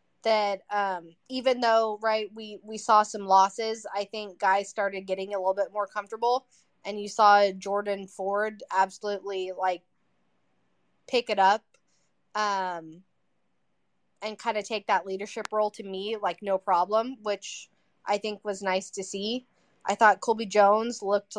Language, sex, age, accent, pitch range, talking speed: English, female, 20-39, American, 195-230 Hz, 155 wpm